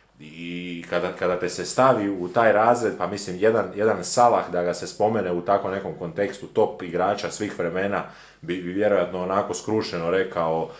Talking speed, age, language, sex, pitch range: 180 wpm, 30-49, Croatian, male, 90-120 Hz